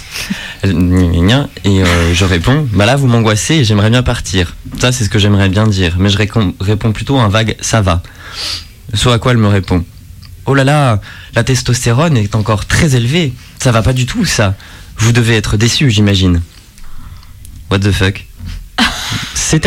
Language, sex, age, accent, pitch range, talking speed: French, male, 20-39, French, 95-125 Hz, 175 wpm